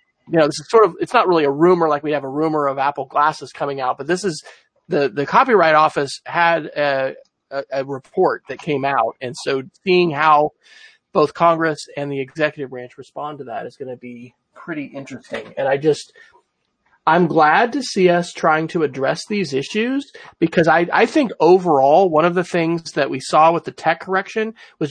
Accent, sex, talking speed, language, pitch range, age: American, male, 205 wpm, English, 140-180 Hz, 30-49